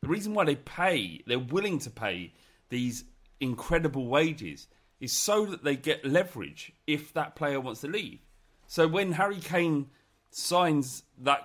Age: 30-49